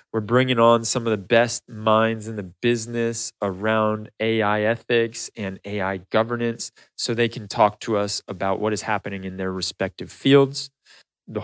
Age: 20-39